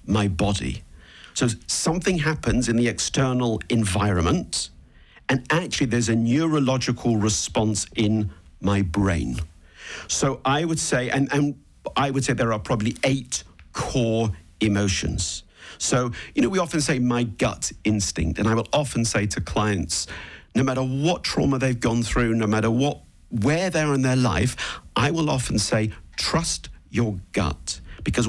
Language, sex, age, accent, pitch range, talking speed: English, male, 50-69, British, 100-130 Hz, 155 wpm